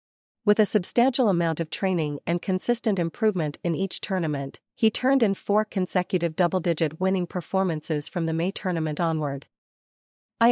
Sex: female